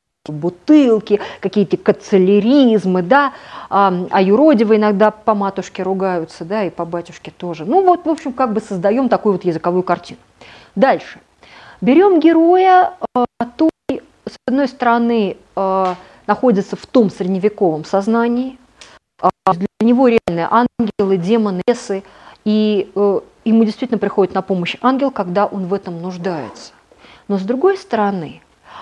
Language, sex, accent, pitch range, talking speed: Russian, female, native, 200-265 Hz, 125 wpm